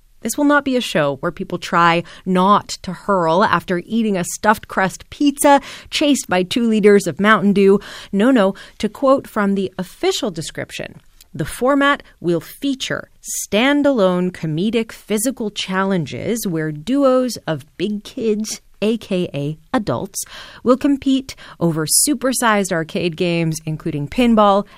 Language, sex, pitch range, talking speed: English, female, 175-220 Hz, 135 wpm